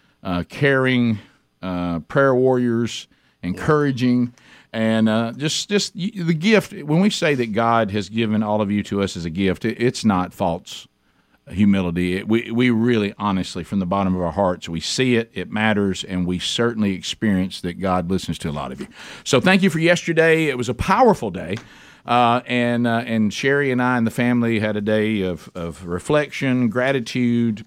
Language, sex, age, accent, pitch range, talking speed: English, male, 50-69, American, 100-135 Hz, 190 wpm